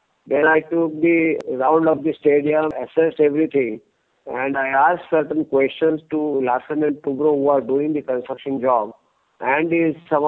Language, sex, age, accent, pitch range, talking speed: English, male, 50-69, Indian, 140-165 Hz, 160 wpm